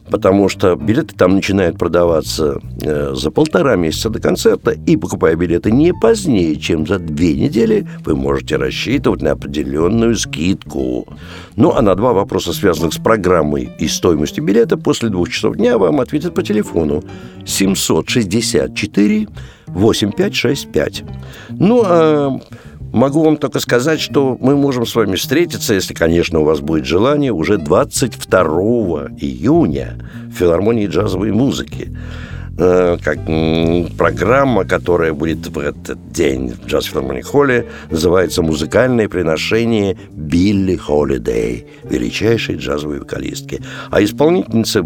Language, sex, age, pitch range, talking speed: Russian, male, 60-79, 80-115 Hz, 125 wpm